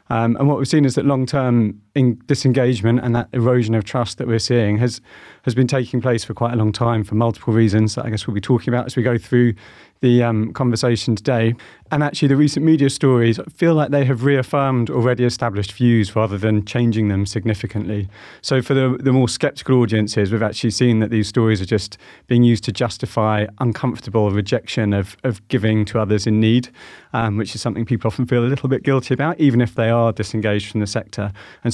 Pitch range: 110-130 Hz